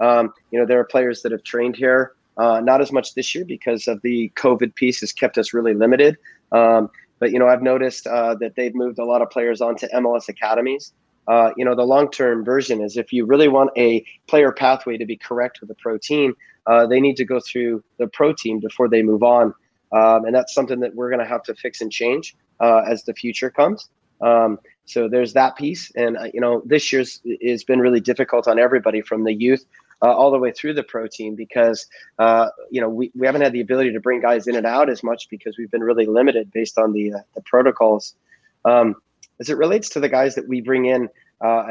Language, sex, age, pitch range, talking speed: English, male, 30-49, 115-130 Hz, 235 wpm